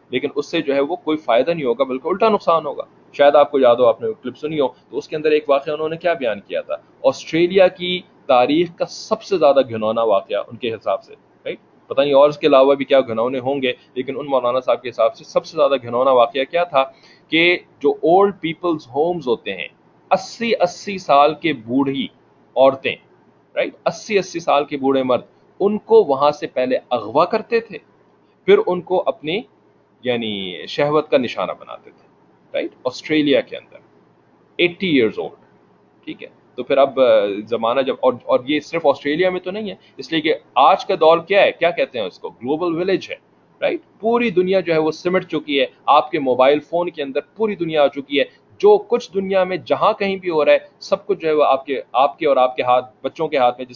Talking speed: 180 wpm